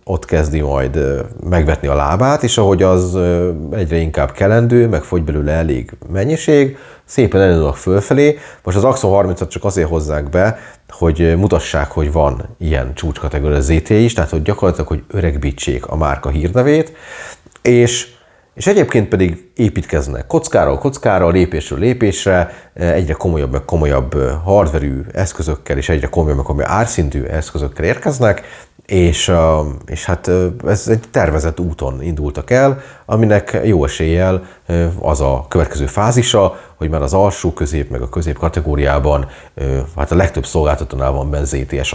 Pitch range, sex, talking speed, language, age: 75-105 Hz, male, 135 wpm, Hungarian, 30-49